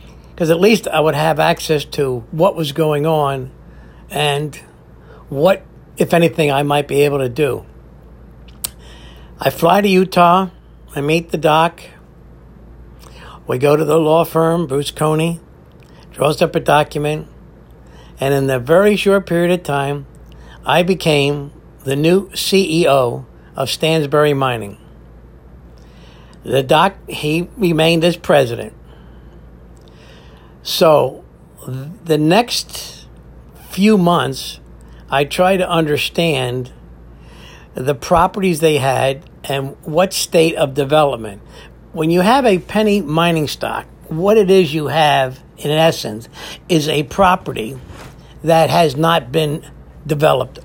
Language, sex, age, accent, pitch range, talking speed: English, male, 60-79, American, 110-165 Hz, 125 wpm